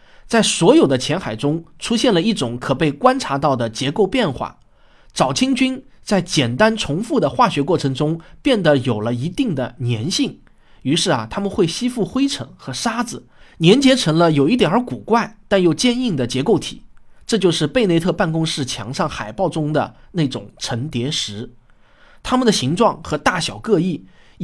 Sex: male